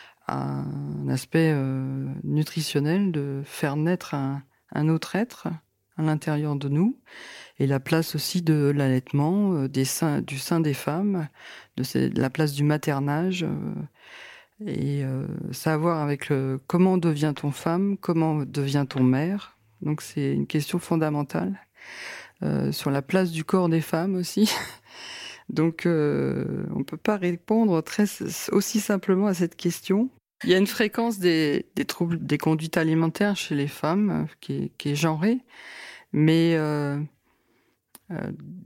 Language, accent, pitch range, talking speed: French, French, 140-175 Hz, 150 wpm